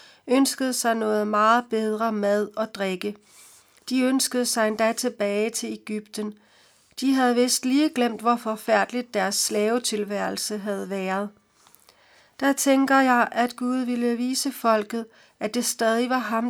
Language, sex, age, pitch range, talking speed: Danish, female, 60-79, 215-245 Hz, 140 wpm